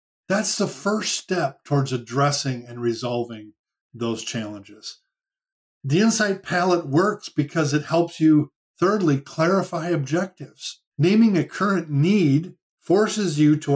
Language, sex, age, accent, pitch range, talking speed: English, male, 50-69, American, 130-185 Hz, 120 wpm